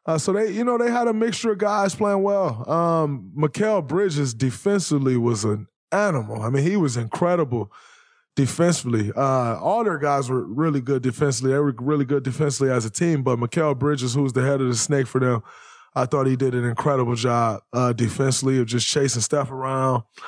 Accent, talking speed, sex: American, 200 wpm, male